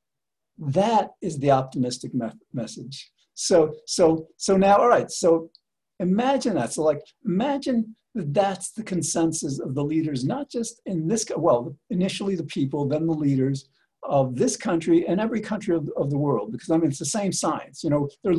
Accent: American